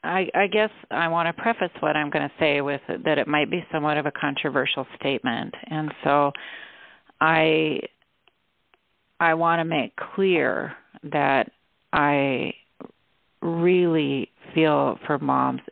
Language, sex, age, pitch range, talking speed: English, female, 40-59, 140-170 Hz, 135 wpm